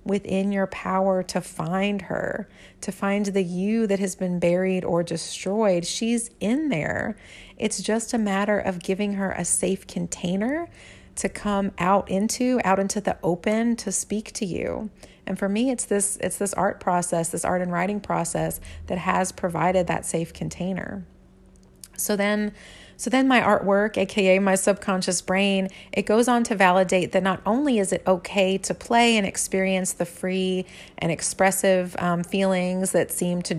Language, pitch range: English, 175-205 Hz